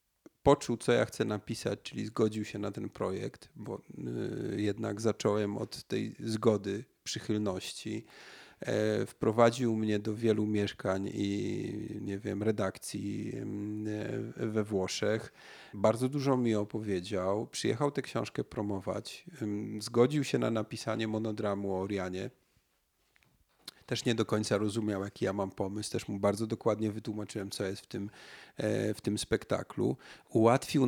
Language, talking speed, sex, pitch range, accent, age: Polish, 130 wpm, male, 100-115 Hz, native, 40-59